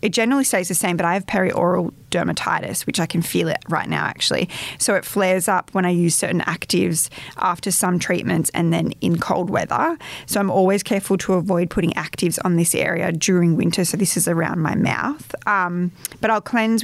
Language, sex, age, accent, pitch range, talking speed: English, female, 20-39, Australian, 165-190 Hz, 205 wpm